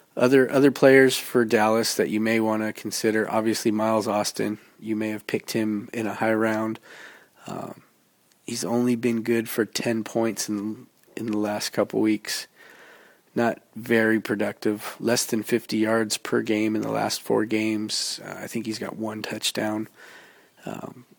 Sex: male